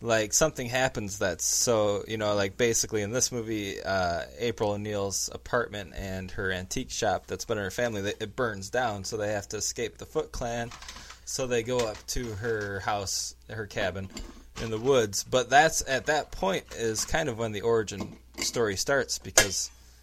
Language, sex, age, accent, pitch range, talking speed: English, male, 20-39, American, 95-115 Hz, 190 wpm